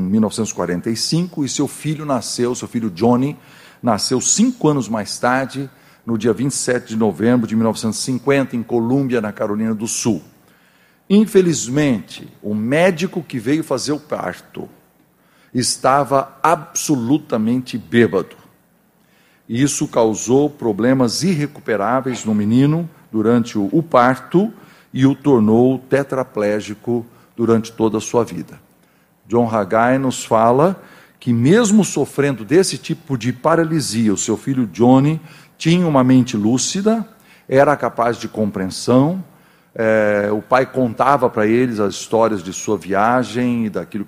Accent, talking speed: Brazilian, 125 wpm